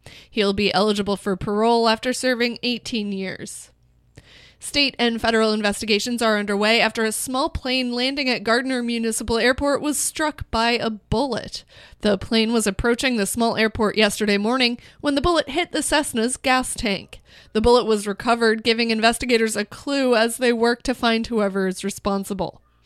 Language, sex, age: English, female, 20-39